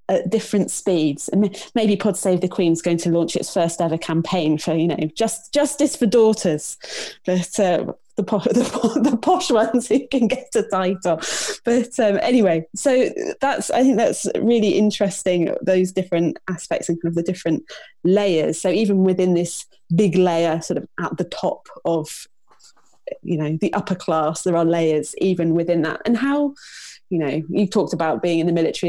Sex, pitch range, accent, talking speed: female, 160-205 Hz, British, 185 wpm